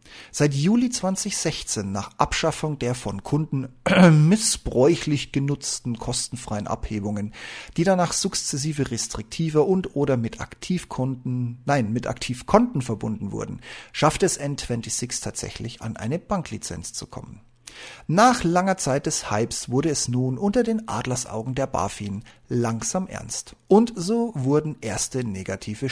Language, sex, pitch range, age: German, male, 110-160 Hz, 40-59